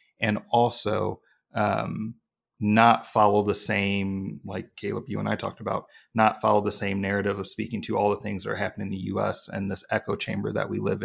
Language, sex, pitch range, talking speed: English, male, 105-115 Hz, 205 wpm